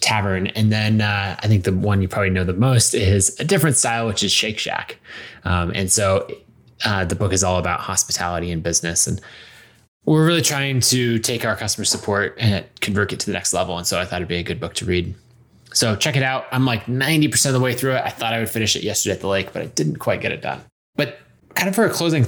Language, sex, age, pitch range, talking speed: English, male, 20-39, 100-130 Hz, 255 wpm